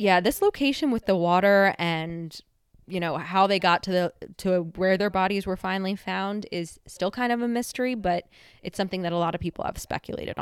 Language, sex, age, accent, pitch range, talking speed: English, female, 20-39, American, 170-195 Hz, 215 wpm